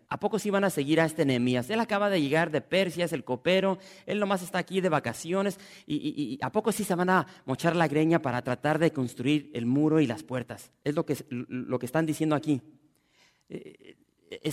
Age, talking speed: 40-59, 225 wpm